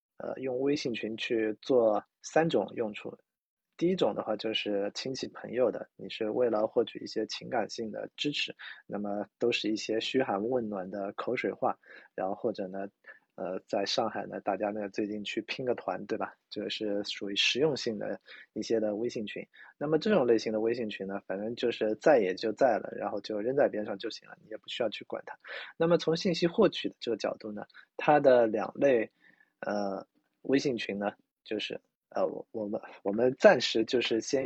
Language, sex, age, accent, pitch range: Chinese, male, 20-39, native, 105-135 Hz